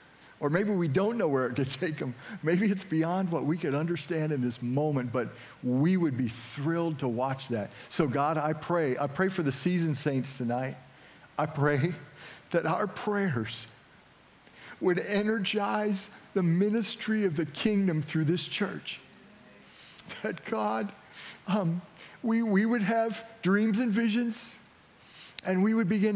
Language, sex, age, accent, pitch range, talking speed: English, male, 50-69, American, 155-205 Hz, 155 wpm